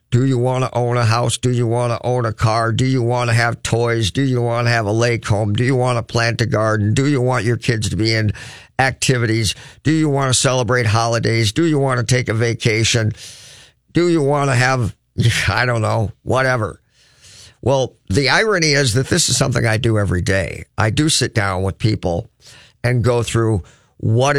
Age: 50-69